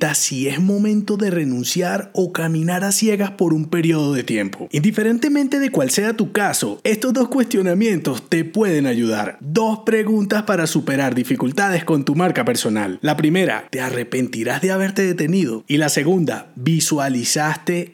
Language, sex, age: Spanish, male, 30-49